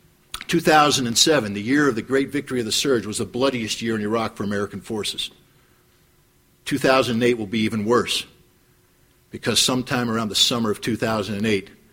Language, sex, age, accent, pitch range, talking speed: English, male, 50-69, American, 105-120 Hz, 155 wpm